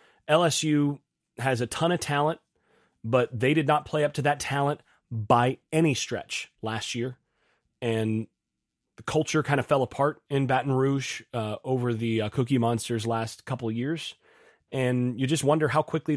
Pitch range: 115-150 Hz